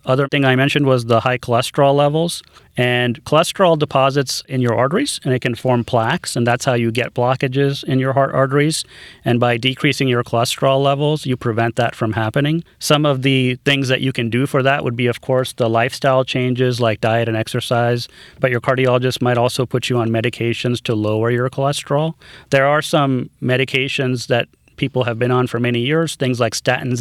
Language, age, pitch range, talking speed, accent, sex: English, 30-49, 120-135 Hz, 200 wpm, American, male